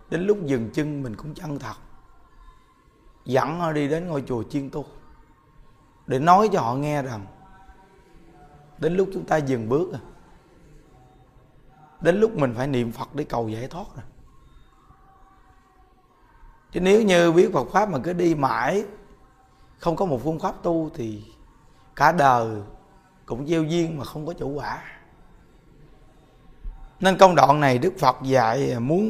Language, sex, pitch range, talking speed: Vietnamese, male, 125-175 Hz, 150 wpm